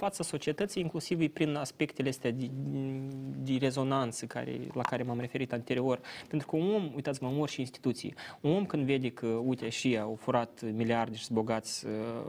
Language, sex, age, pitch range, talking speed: Romanian, male, 20-39, 120-155 Hz, 180 wpm